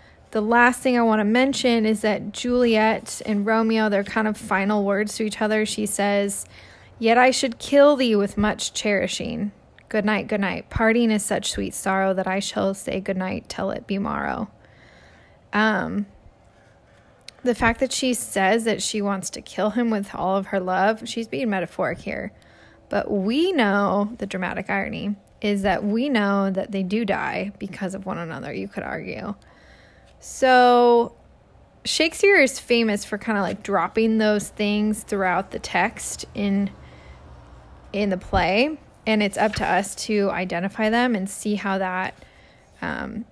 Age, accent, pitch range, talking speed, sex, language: 20-39, American, 195-225 Hz, 170 wpm, female, English